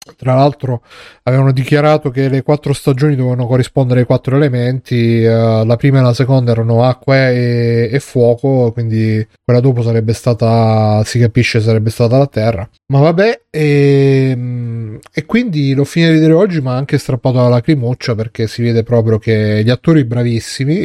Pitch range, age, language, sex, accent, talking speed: 115-140 Hz, 30-49, Italian, male, native, 160 wpm